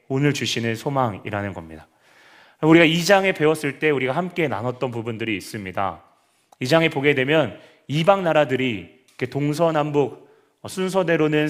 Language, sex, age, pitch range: Korean, male, 30-49, 125-160 Hz